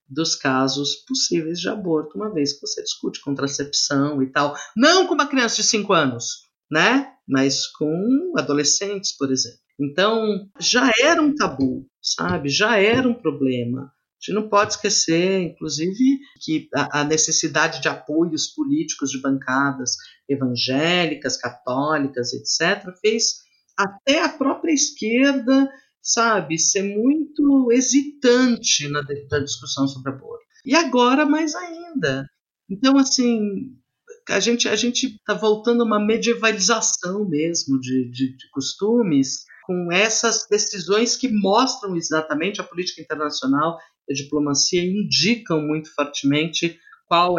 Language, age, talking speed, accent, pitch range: Portuguese, 50-69, 135 wpm, Brazilian, 140-230 Hz